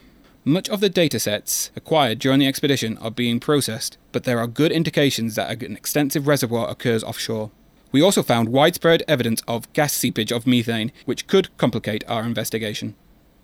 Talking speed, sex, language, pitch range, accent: 165 wpm, male, English, 115-145 Hz, British